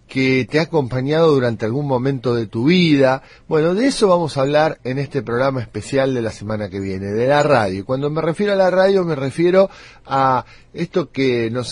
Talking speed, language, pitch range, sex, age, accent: 205 wpm, Spanish, 125-180 Hz, male, 40-59, Argentinian